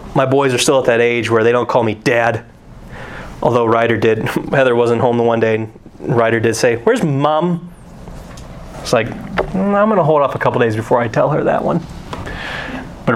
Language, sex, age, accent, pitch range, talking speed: English, male, 20-39, American, 120-160 Hz, 210 wpm